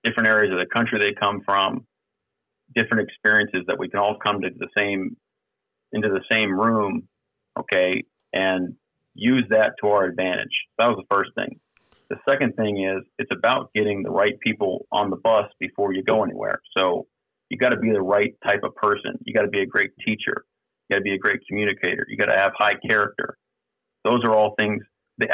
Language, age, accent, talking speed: English, 40-59, American, 205 wpm